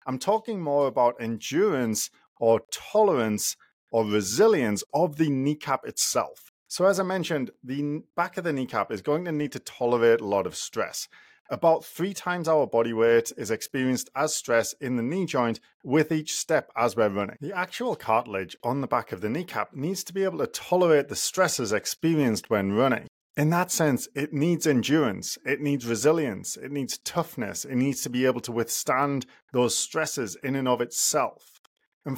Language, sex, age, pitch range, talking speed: English, male, 30-49, 115-155 Hz, 185 wpm